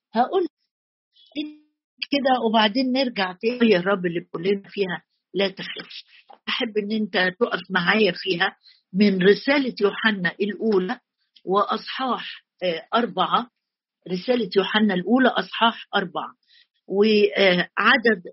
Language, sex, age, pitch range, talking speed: Arabic, female, 50-69, 185-240 Hz, 100 wpm